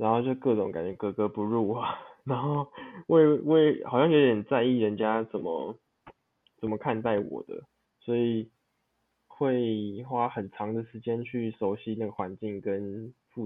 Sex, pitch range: male, 105-130 Hz